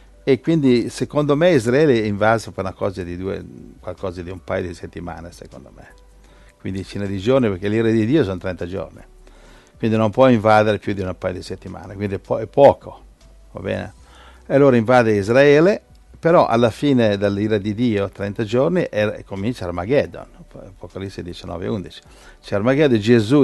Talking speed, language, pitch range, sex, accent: 175 wpm, Italian, 100-130 Hz, male, native